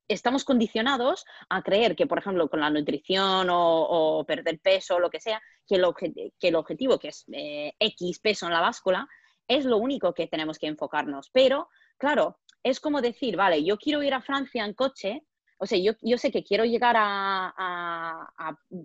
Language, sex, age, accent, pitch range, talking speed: English, female, 20-39, Spanish, 185-275 Hz, 200 wpm